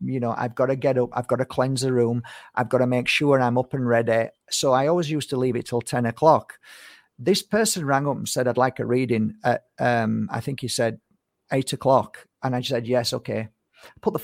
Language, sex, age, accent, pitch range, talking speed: English, male, 50-69, British, 120-155 Hz, 240 wpm